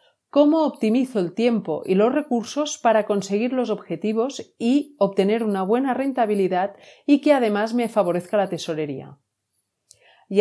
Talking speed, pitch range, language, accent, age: 140 wpm, 175-245 Hz, Spanish, Spanish, 40-59